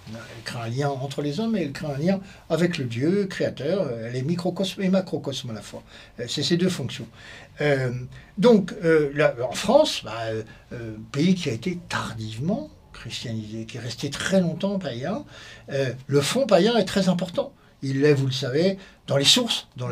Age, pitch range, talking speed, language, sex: 60-79, 135-190 Hz, 195 wpm, French, male